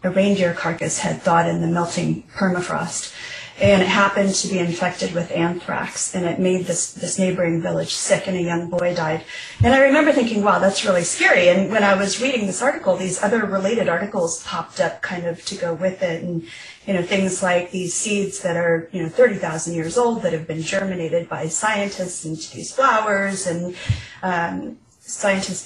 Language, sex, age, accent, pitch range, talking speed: English, female, 30-49, American, 170-200 Hz, 195 wpm